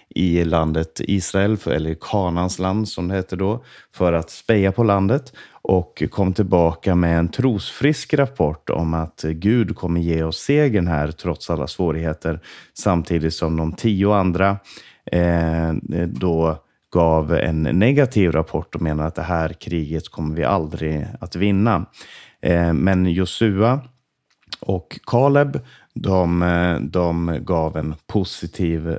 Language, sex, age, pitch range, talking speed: Swedish, male, 30-49, 85-110 Hz, 130 wpm